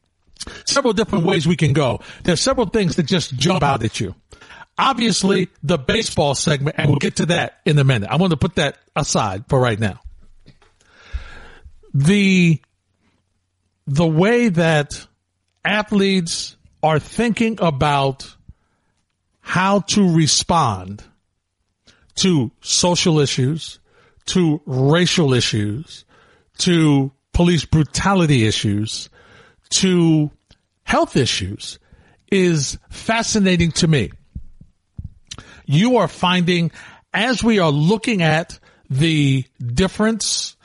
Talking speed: 110 wpm